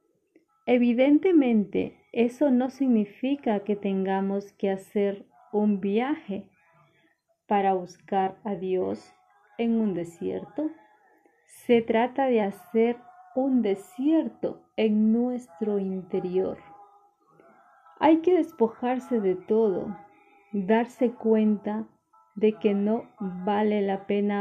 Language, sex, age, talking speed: Spanish, female, 30-49, 95 wpm